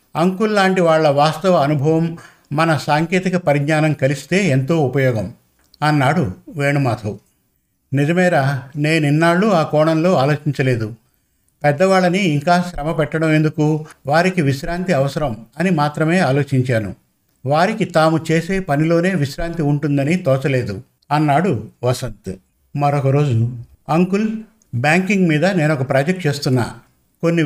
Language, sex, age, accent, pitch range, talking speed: Telugu, male, 50-69, native, 140-170 Hz, 105 wpm